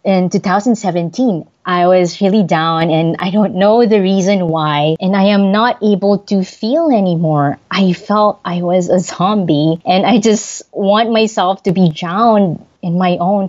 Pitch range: 170-210 Hz